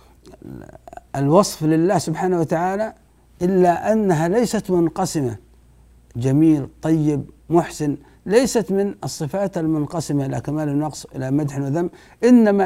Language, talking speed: Arabic, 105 wpm